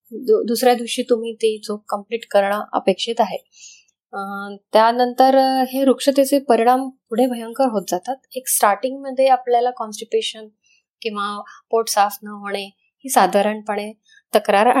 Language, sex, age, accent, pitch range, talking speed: Marathi, female, 20-39, native, 205-255 Hz, 80 wpm